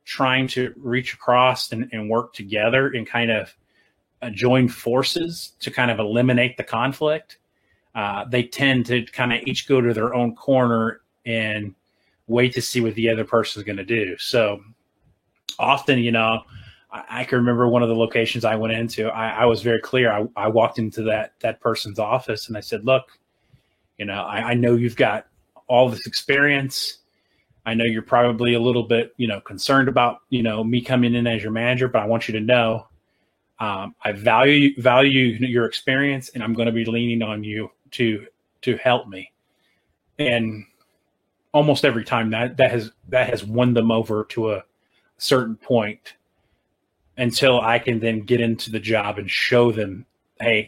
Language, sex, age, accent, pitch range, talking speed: English, male, 30-49, American, 110-125 Hz, 185 wpm